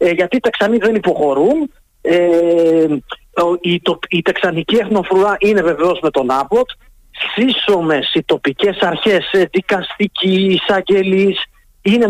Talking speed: 130 wpm